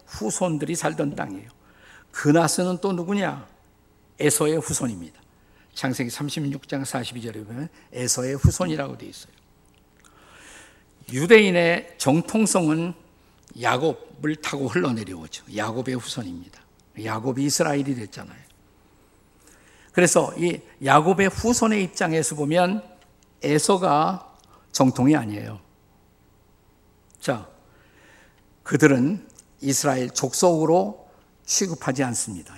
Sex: male